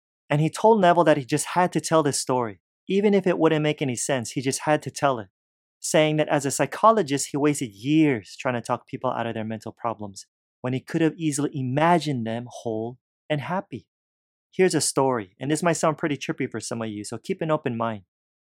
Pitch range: 115-155 Hz